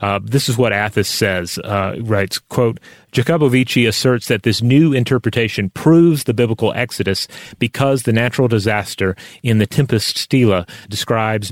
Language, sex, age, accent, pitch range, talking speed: English, male, 30-49, American, 105-125 Hz, 145 wpm